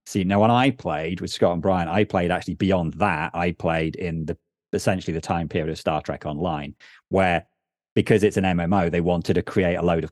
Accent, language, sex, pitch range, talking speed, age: British, English, male, 90-105 Hz, 225 wpm, 30-49